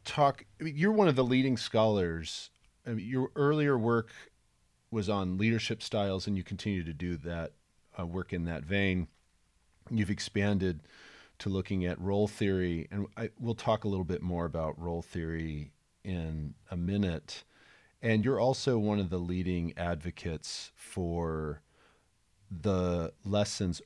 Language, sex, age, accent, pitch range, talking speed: English, male, 40-59, American, 80-105 Hz, 155 wpm